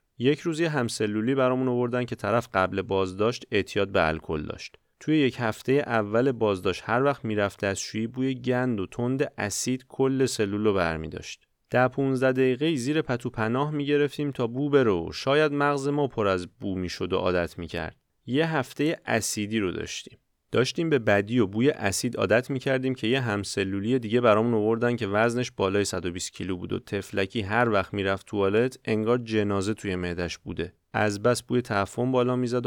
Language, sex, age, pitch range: Persian, male, 30-49, 95-125 Hz